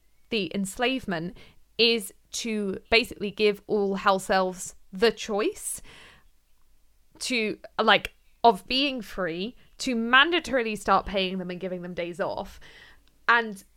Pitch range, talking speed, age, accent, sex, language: 195-240 Hz, 120 wpm, 20-39, British, female, English